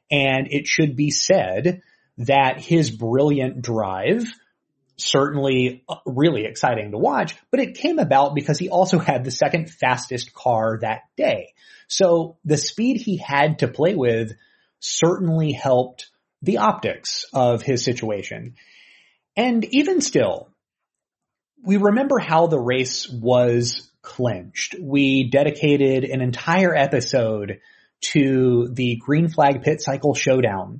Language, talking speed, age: English, 125 wpm, 30-49